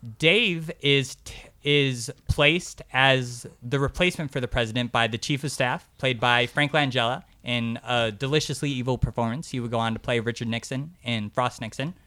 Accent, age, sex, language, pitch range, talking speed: American, 20-39, male, English, 120-150 Hz, 180 wpm